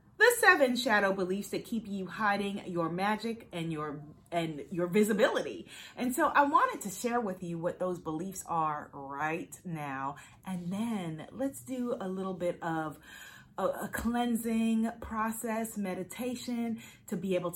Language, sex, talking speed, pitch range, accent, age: English, female, 155 wpm, 170-245 Hz, American, 30-49